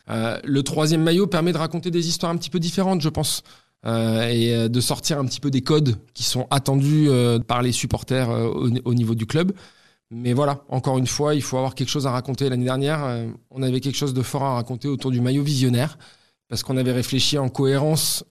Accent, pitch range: French, 120-145 Hz